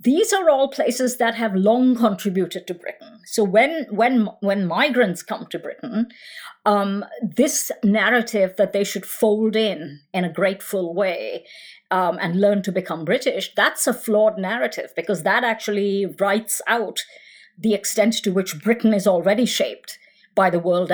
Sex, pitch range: female, 180-225 Hz